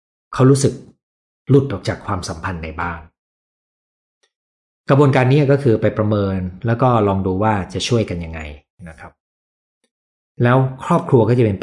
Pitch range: 90-125 Hz